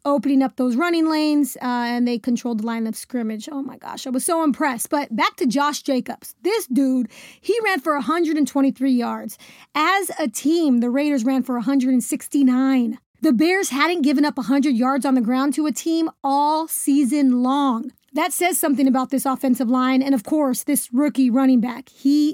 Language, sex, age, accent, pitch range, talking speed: English, female, 30-49, American, 260-320 Hz, 190 wpm